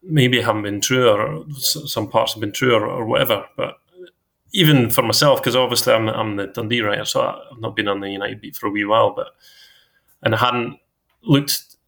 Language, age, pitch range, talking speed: English, 20-39, 105-135 Hz, 205 wpm